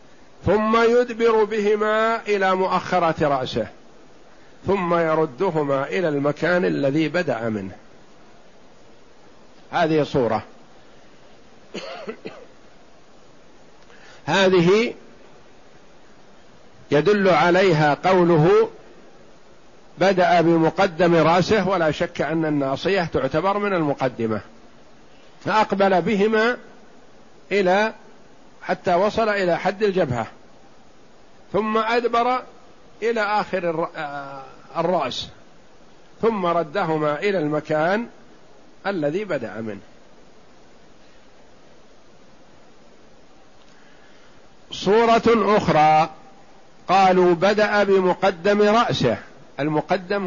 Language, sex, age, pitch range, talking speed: Arabic, male, 50-69, 165-210 Hz, 65 wpm